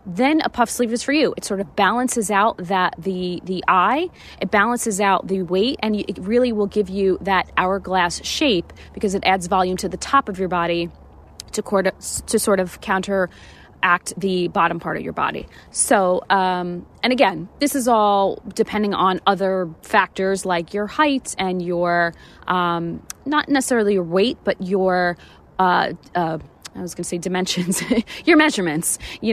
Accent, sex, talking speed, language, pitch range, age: American, female, 175 wpm, English, 180-220 Hz, 20-39